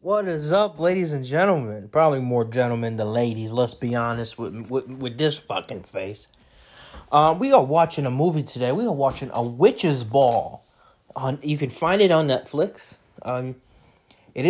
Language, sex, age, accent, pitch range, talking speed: English, male, 20-39, American, 130-185 Hz, 175 wpm